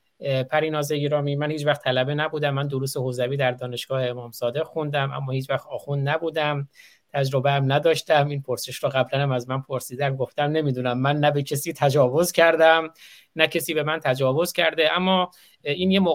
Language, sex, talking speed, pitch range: Persian, male, 165 wpm, 130-150 Hz